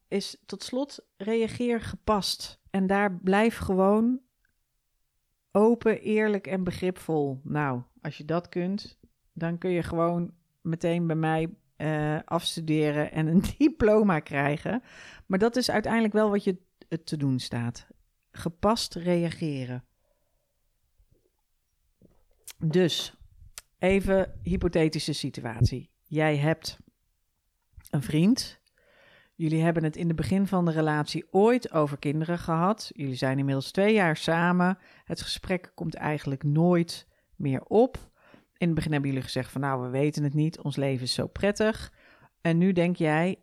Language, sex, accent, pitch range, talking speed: Dutch, female, Dutch, 150-195 Hz, 135 wpm